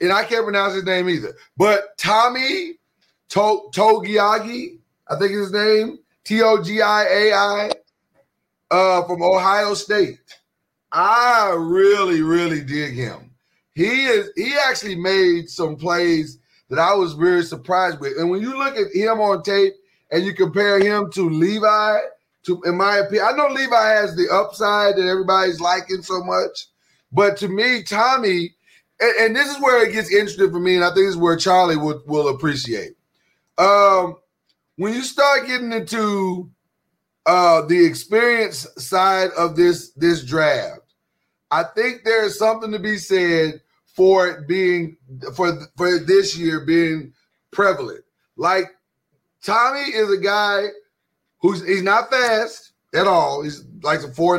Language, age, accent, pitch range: English, 30-49, American, 170-215 Hz